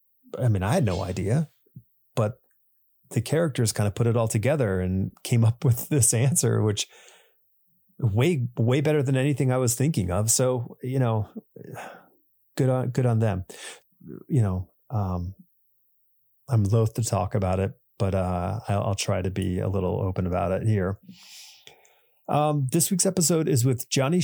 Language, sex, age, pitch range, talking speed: English, male, 30-49, 100-130 Hz, 165 wpm